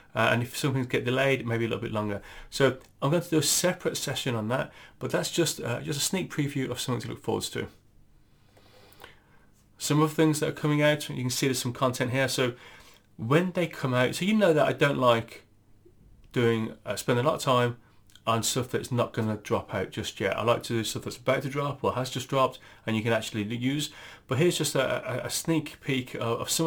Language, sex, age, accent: English, male, 30-49, British